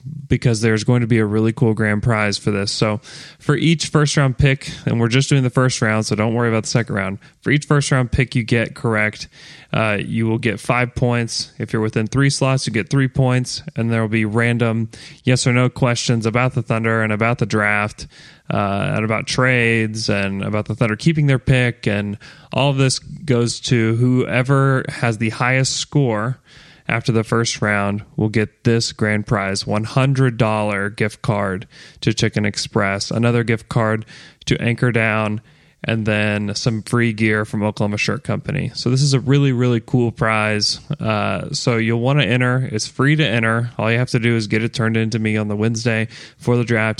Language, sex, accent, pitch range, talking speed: English, male, American, 110-135 Hz, 200 wpm